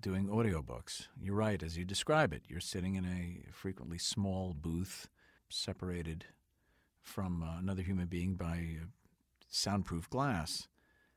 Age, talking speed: 50-69, 125 wpm